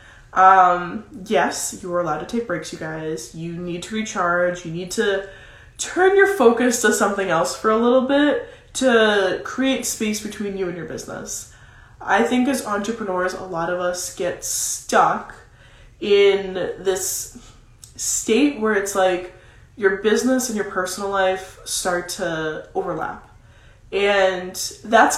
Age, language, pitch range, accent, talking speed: 20-39, English, 180-235 Hz, American, 150 wpm